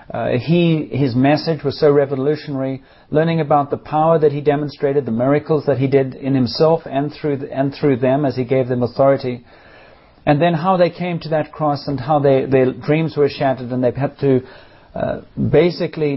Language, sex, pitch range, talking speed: English, male, 125-150 Hz, 195 wpm